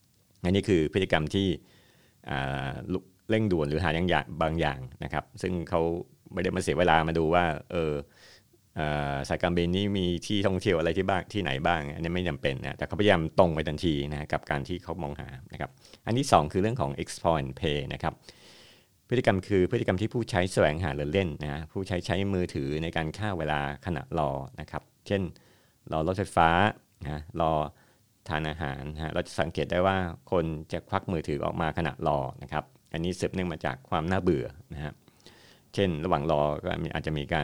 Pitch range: 75-95 Hz